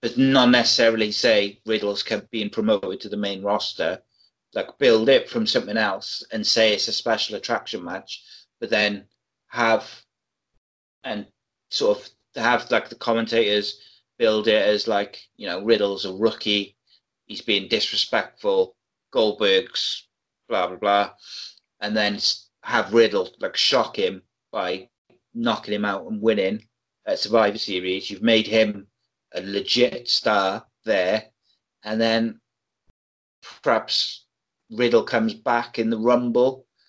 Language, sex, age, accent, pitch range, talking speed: English, male, 30-49, British, 105-115 Hz, 135 wpm